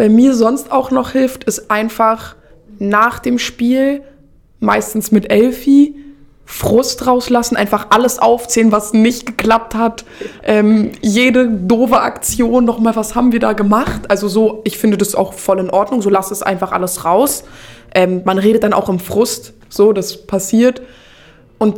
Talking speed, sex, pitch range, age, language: 165 wpm, female, 195-225 Hz, 20-39, German